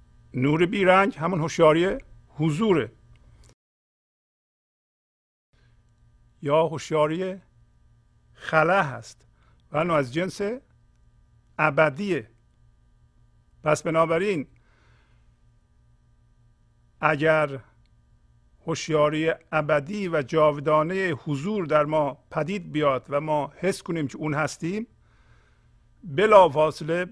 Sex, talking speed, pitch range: male, 75 wpm, 120-175 Hz